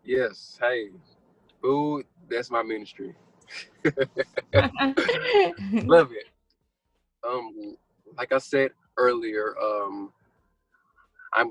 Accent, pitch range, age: American, 105-150 Hz, 20-39